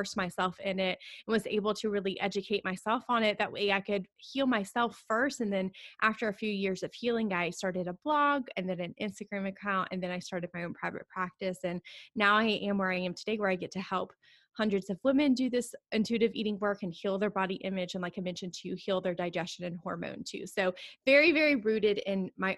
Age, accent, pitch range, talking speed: 20-39, American, 185-220 Hz, 230 wpm